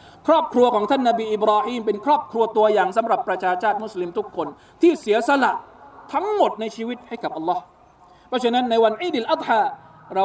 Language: Thai